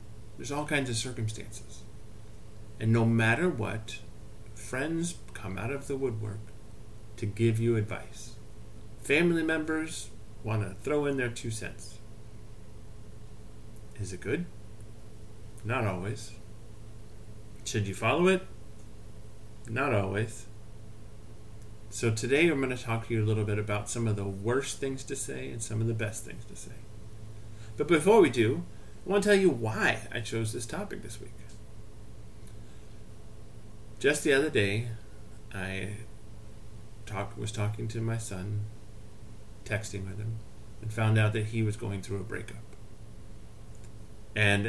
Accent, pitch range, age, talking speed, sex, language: American, 105-115 Hz, 40-59, 140 wpm, male, English